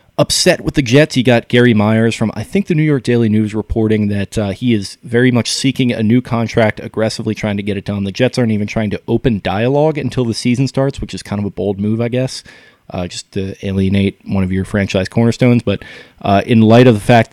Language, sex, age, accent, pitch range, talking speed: English, male, 20-39, American, 100-125 Hz, 240 wpm